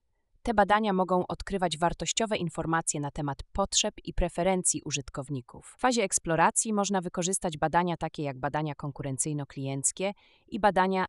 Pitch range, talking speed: 145-180 Hz, 130 wpm